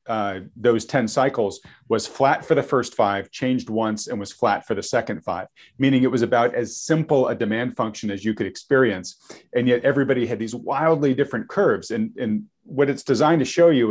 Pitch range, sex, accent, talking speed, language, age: 105-125 Hz, male, American, 205 wpm, English, 40-59